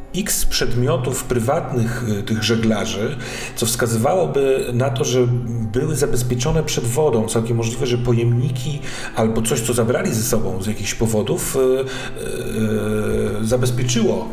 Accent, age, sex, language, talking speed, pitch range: native, 40-59, male, Polish, 115 wpm, 115-125 Hz